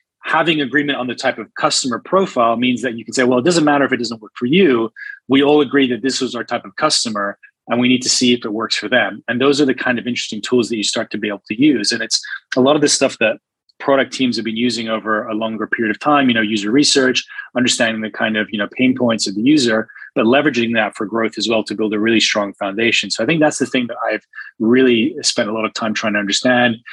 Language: English